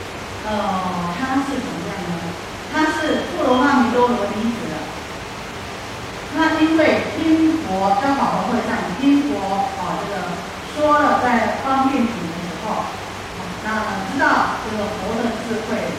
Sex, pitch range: female, 200-265 Hz